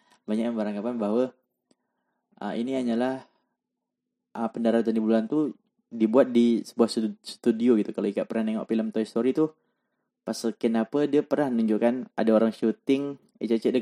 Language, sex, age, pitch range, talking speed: Malay, male, 20-39, 105-130 Hz, 155 wpm